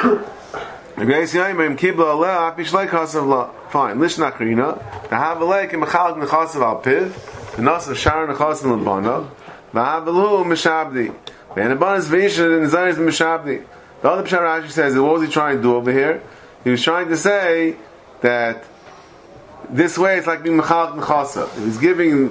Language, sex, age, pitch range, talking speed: English, male, 30-49, 135-165 Hz, 75 wpm